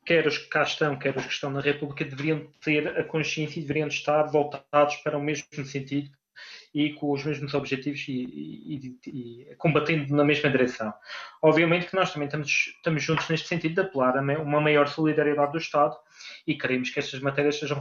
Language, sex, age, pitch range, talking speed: Portuguese, male, 20-39, 140-165 Hz, 190 wpm